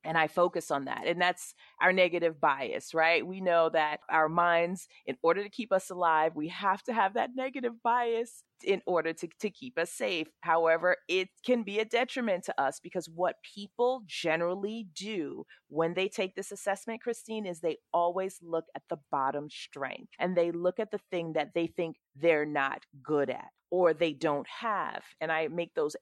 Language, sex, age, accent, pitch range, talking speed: English, female, 30-49, American, 160-225 Hz, 195 wpm